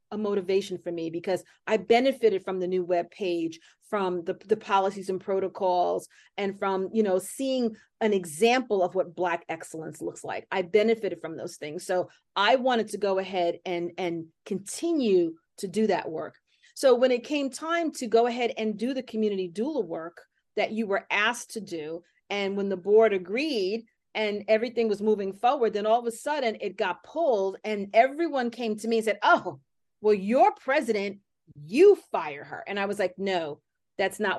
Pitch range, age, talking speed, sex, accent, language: 185-235 Hz, 40-59, 185 wpm, female, American, English